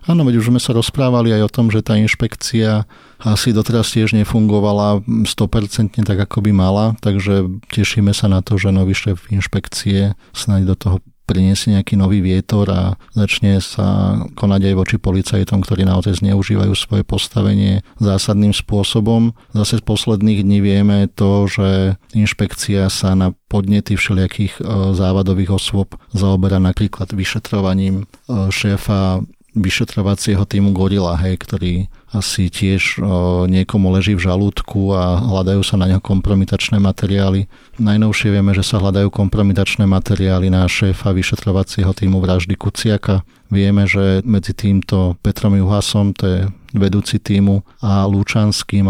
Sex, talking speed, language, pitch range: male, 135 wpm, Slovak, 95-105 Hz